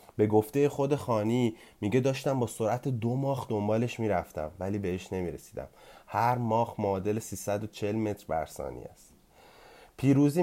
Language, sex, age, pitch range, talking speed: Persian, male, 30-49, 105-135 Hz, 140 wpm